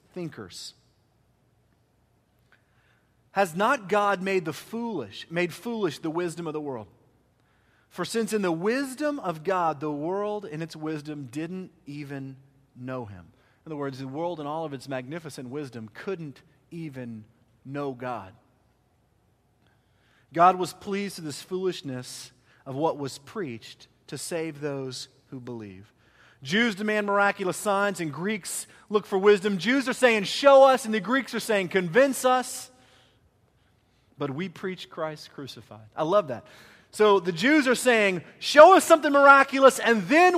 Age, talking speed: 40-59, 150 wpm